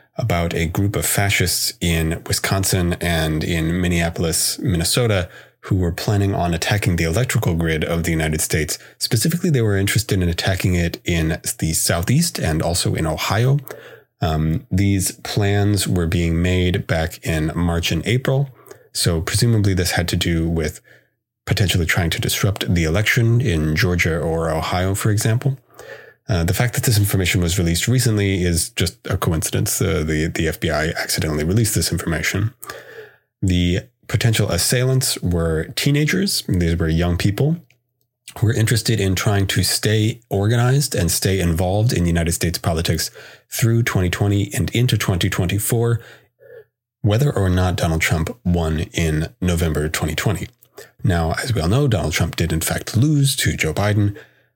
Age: 30-49